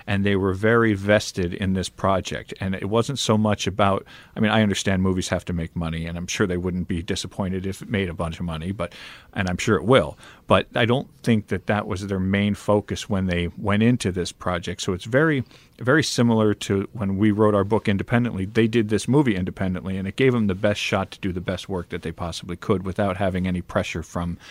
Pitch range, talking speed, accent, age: 90-110 Hz, 240 wpm, American, 40-59